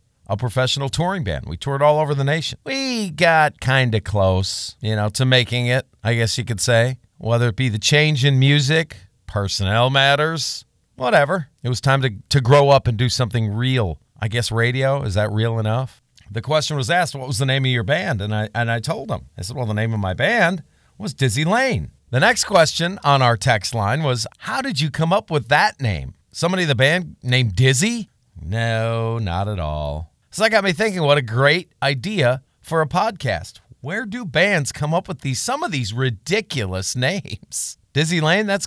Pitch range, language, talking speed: 115-155 Hz, English, 210 wpm